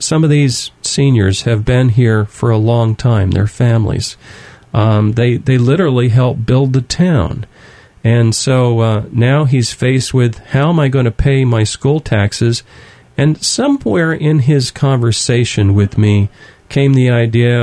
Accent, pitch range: American, 110-135 Hz